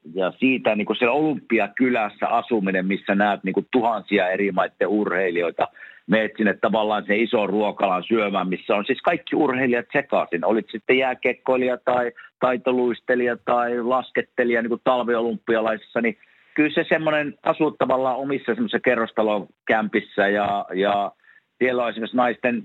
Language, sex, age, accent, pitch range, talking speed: Finnish, male, 50-69, native, 105-130 Hz, 140 wpm